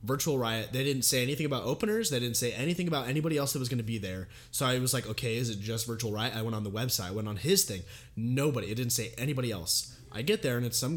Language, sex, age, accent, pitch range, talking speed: English, male, 20-39, American, 110-140 Hz, 290 wpm